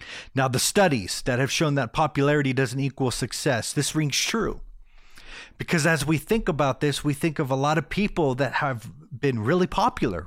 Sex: male